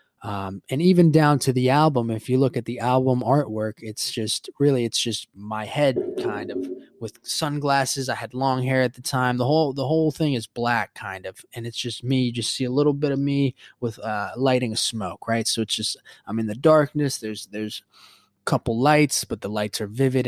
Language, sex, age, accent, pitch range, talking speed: English, male, 20-39, American, 110-145 Hz, 220 wpm